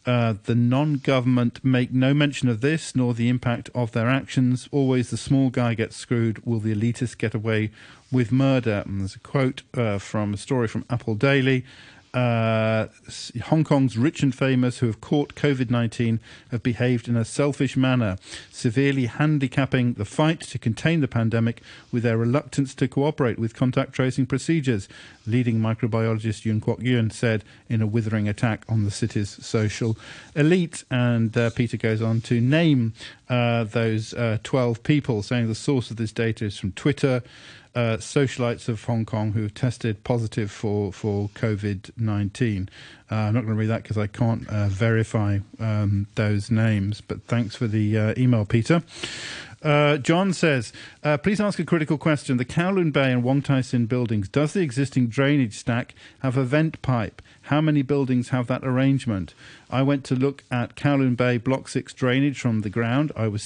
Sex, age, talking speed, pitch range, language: male, 50-69, 175 wpm, 110-135 Hz, English